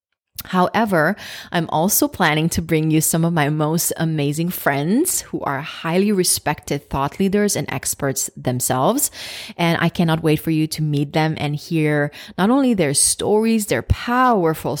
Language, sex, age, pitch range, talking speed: English, female, 30-49, 145-185 Hz, 160 wpm